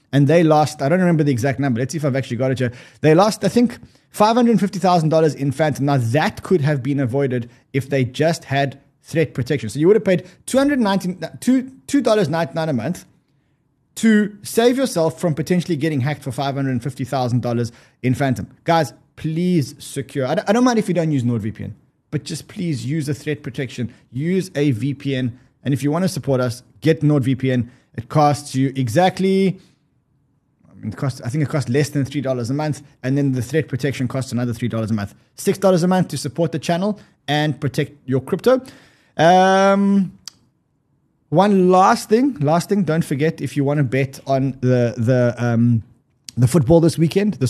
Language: English